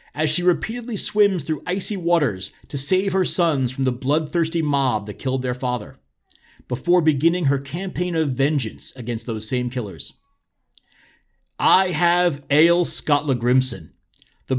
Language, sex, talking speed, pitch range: English, male, 145 wpm, 135-200 Hz